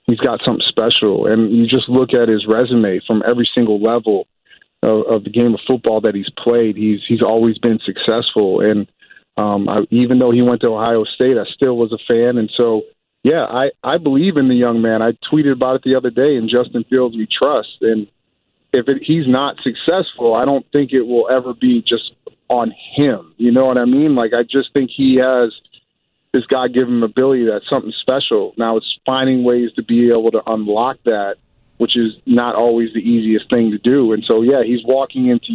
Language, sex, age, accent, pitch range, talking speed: English, male, 30-49, American, 115-130 Hz, 215 wpm